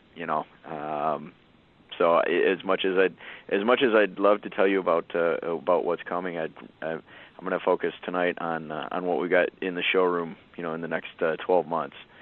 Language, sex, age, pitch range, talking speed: English, male, 30-49, 80-95 Hz, 215 wpm